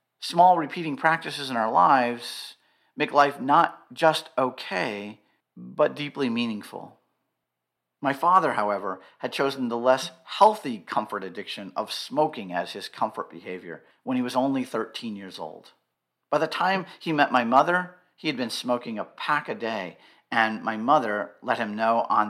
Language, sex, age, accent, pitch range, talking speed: English, male, 40-59, American, 105-160 Hz, 160 wpm